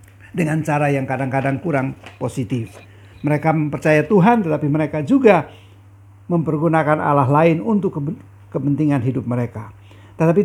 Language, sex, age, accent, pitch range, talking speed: English, male, 50-69, Indonesian, 115-160 Hz, 120 wpm